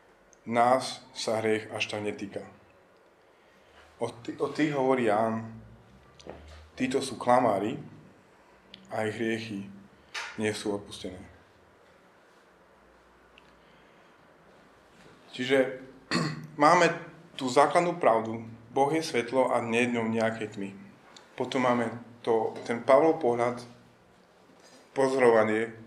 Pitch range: 110-135 Hz